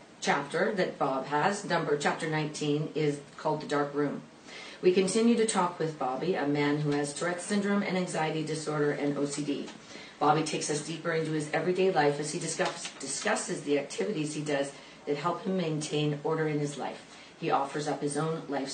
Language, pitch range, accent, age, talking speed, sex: English, 145-175 Hz, American, 40-59, 185 wpm, female